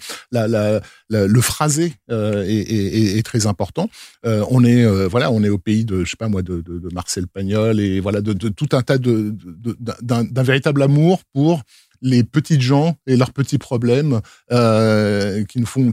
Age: 50-69